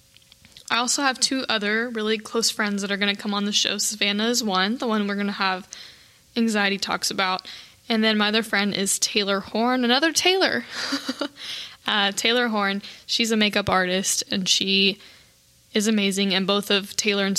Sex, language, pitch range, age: female, English, 190-230 Hz, 10-29